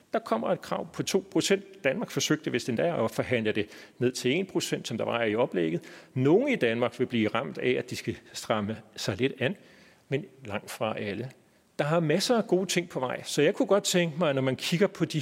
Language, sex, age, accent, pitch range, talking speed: Danish, male, 40-59, native, 125-185 Hz, 240 wpm